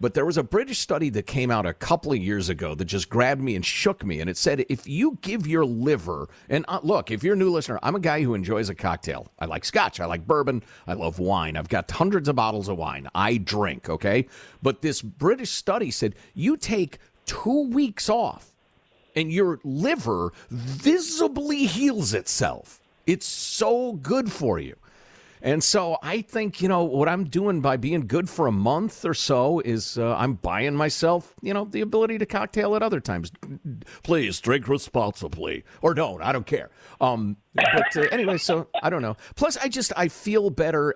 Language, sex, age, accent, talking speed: English, male, 50-69, American, 200 wpm